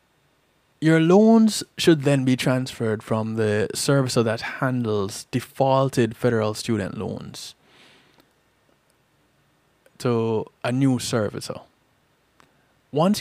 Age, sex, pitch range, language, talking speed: 20-39, male, 115-145 Hz, English, 90 wpm